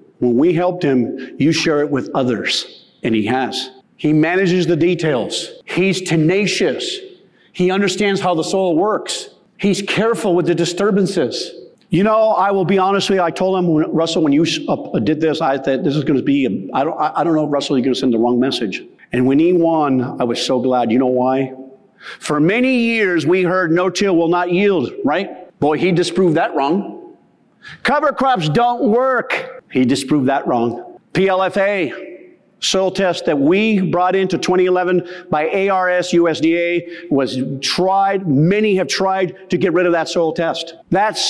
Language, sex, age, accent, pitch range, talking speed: English, male, 50-69, American, 165-200 Hz, 185 wpm